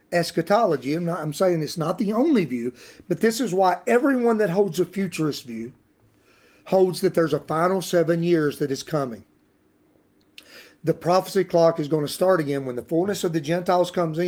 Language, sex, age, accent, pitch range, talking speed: English, male, 40-59, American, 145-185 Hz, 190 wpm